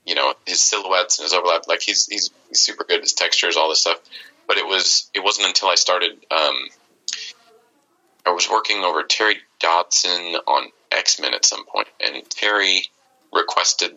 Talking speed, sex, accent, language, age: 175 wpm, male, American, English, 30-49